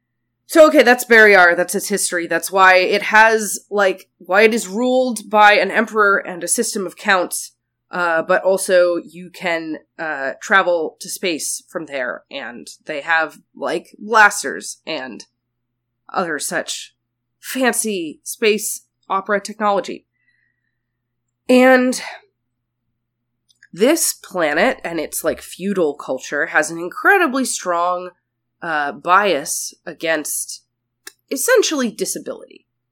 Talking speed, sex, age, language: 115 wpm, female, 20-39, English